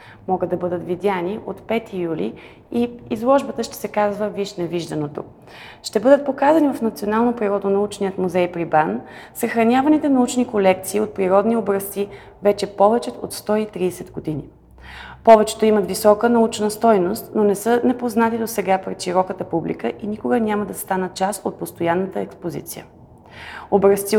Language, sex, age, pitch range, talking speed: Bulgarian, female, 30-49, 185-225 Hz, 140 wpm